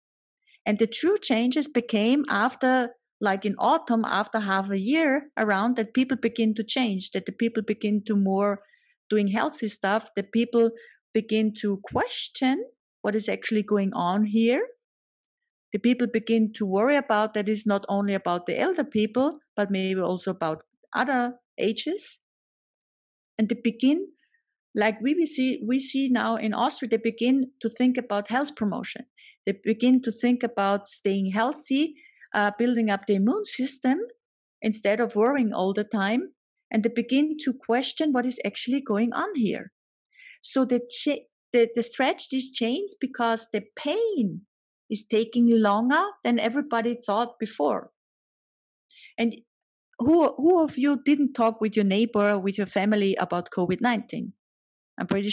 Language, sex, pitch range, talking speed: English, female, 210-270 Hz, 155 wpm